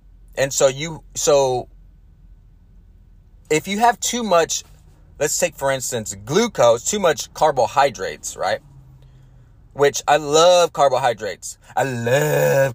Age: 30-49